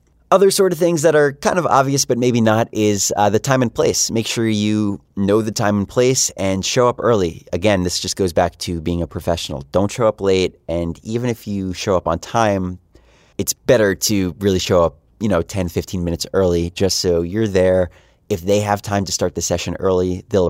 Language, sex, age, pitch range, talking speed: English, male, 30-49, 90-115 Hz, 225 wpm